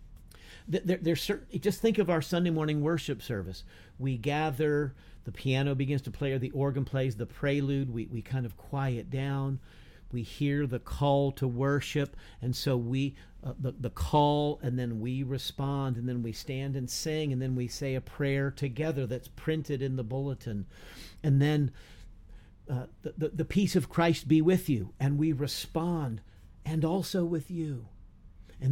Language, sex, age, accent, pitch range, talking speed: English, male, 50-69, American, 120-155 Hz, 180 wpm